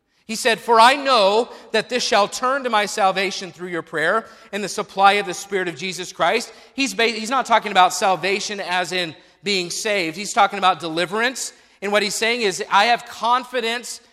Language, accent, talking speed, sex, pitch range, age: English, American, 195 wpm, male, 185-225 Hz, 40-59